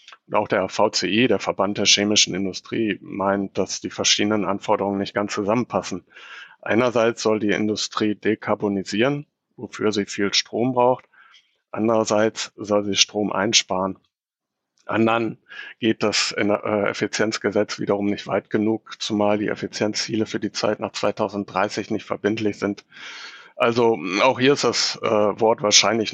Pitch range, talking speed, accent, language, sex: 100-110 Hz, 135 wpm, German, German, male